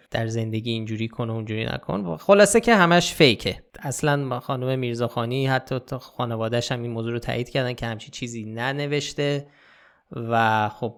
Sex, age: male, 20-39